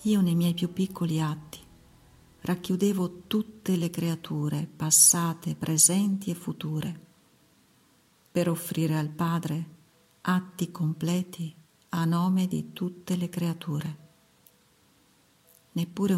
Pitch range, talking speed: 155-175 Hz, 100 wpm